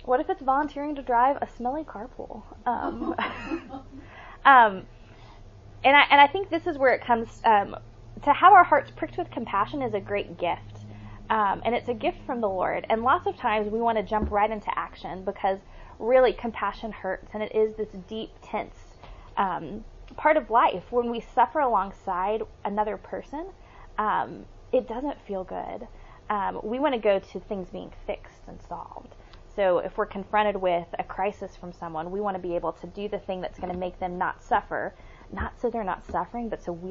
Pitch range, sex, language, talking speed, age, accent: 195-245 Hz, female, English, 195 wpm, 20-39, American